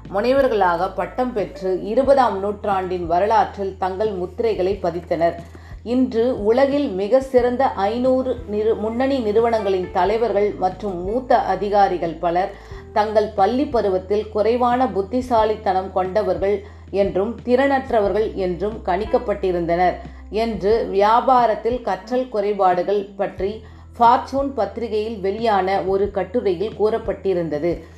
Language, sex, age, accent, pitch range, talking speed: Tamil, female, 30-49, native, 185-230 Hz, 90 wpm